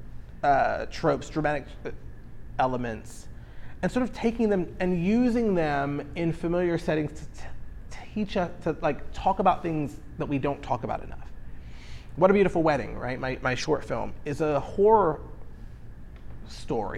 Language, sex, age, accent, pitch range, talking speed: English, male, 30-49, American, 135-195 Hz, 150 wpm